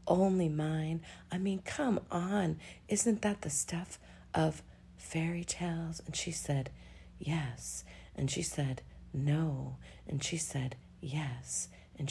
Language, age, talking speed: English, 40-59, 130 wpm